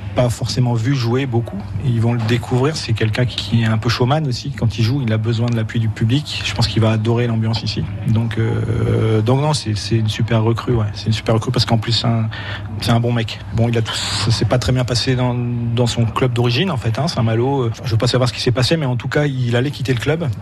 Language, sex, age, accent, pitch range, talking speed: French, male, 40-59, French, 110-125 Hz, 275 wpm